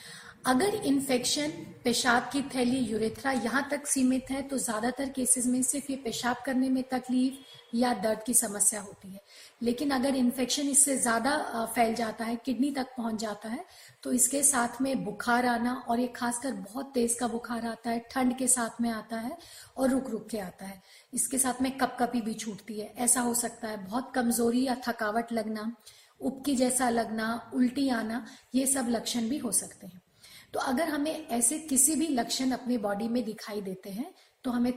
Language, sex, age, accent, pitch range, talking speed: Hindi, female, 40-59, native, 230-265 Hz, 190 wpm